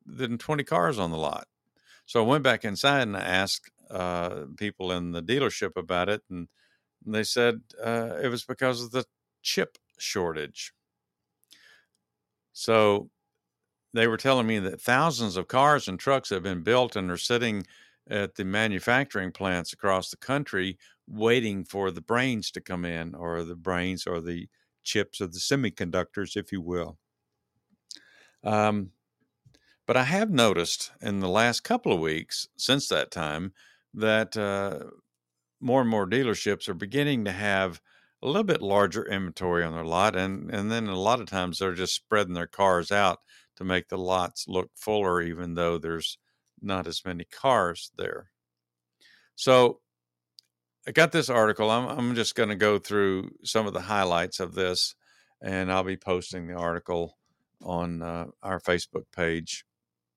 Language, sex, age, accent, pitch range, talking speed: English, male, 50-69, American, 85-110 Hz, 165 wpm